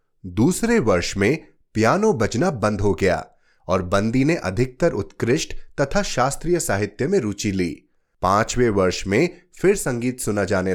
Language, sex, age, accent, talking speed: Hindi, male, 30-49, native, 145 wpm